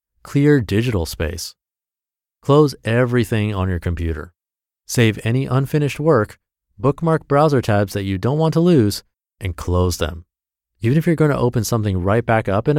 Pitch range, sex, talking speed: 85-125 Hz, male, 160 wpm